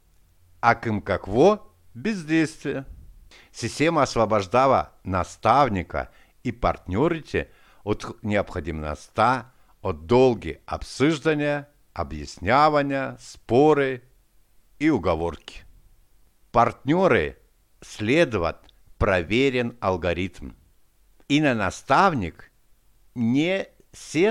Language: Bulgarian